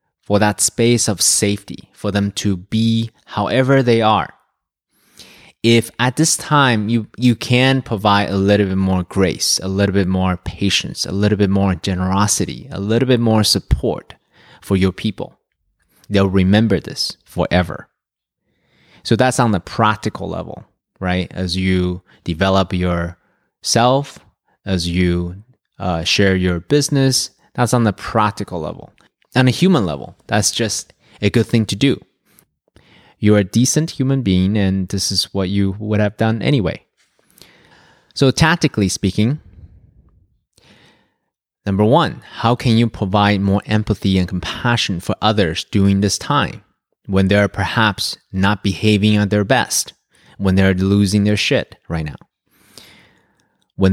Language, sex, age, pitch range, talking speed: English, male, 20-39, 95-115 Hz, 140 wpm